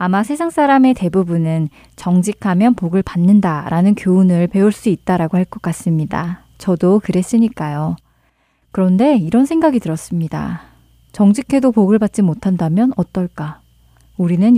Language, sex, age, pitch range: Korean, female, 20-39, 170-215 Hz